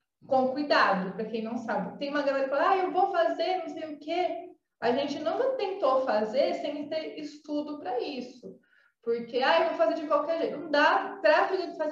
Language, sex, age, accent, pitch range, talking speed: Portuguese, female, 20-39, Brazilian, 220-290 Hz, 210 wpm